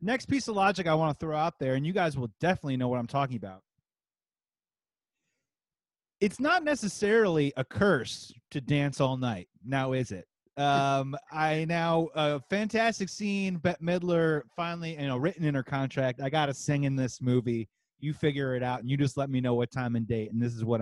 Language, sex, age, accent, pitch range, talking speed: English, male, 30-49, American, 135-185 Hz, 210 wpm